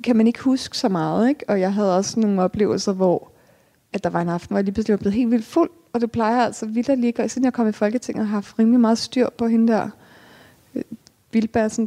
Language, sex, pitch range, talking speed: Danish, female, 195-230 Hz, 265 wpm